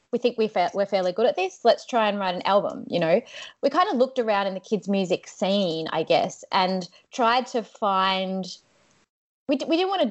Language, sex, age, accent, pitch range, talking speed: English, female, 20-39, Australian, 185-240 Hz, 225 wpm